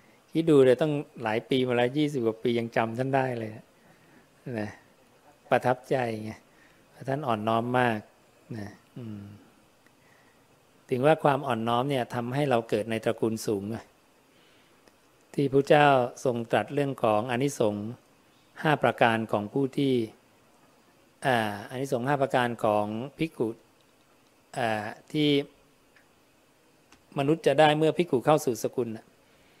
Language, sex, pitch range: English, male, 115-140 Hz